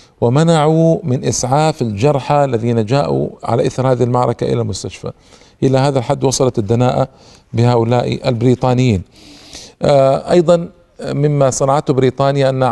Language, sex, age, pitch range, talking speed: Arabic, male, 50-69, 120-140 Hz, 115 wpm